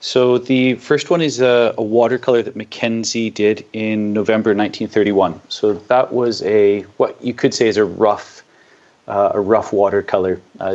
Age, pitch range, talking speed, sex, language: 30-49, 100-125 Hz, 160 wpm, male, English